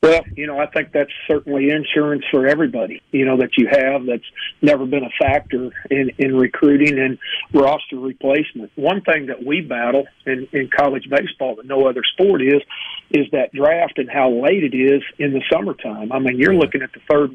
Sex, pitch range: male, 135-150 Hz